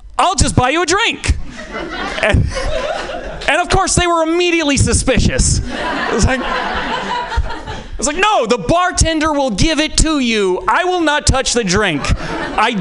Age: 30-49